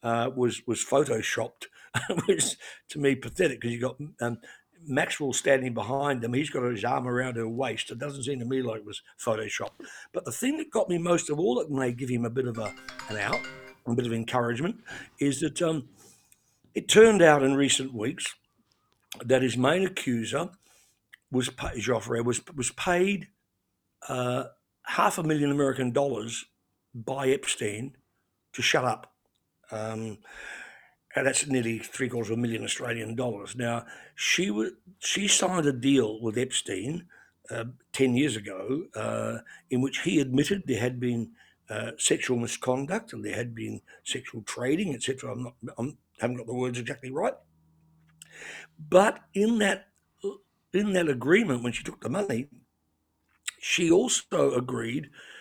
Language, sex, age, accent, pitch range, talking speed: English, male, 60-79, British, 115-150 Hz, 160 wpm